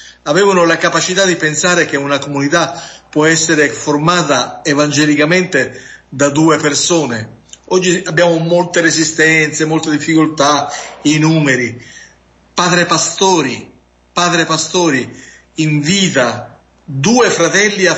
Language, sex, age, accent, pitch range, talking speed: Italian, male, 50-69, native, 145-180 Hz, 105 wpm